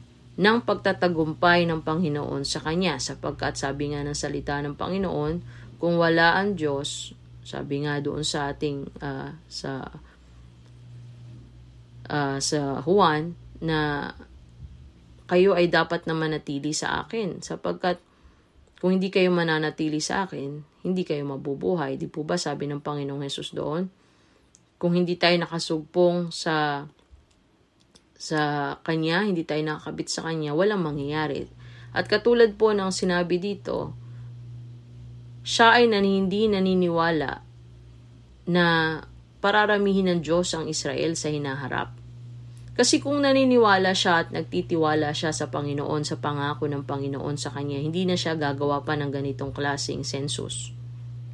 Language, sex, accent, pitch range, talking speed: Filipino, female, native, 130-175 Hz, 125 wpm